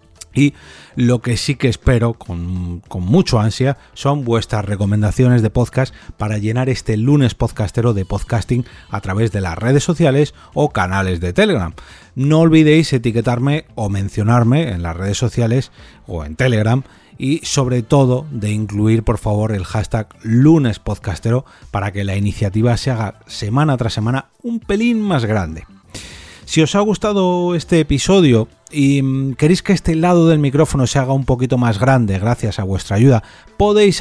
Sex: male